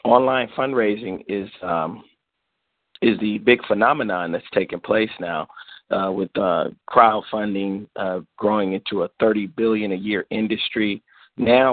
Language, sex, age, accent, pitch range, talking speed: English, male, 40-59, American, 100-115 Hz, 135 wpm